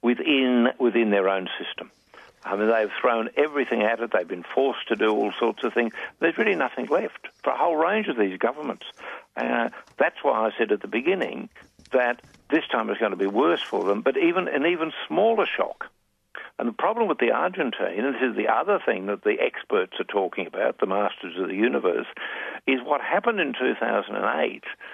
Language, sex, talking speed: English, male, 200 wpm